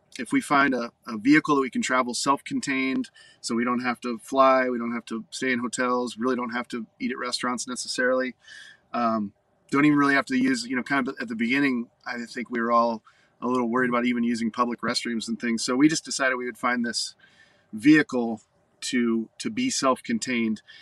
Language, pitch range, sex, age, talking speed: English, 115-140 Hz, male, 30-49, 215 wpm